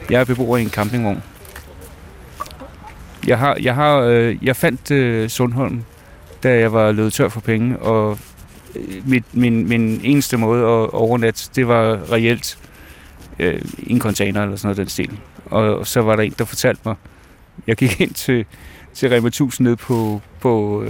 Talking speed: 170 wpm